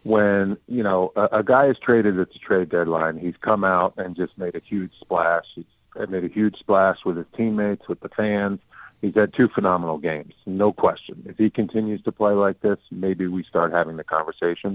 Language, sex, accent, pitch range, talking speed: English, male, American, 85-100 Hz, 210 wpm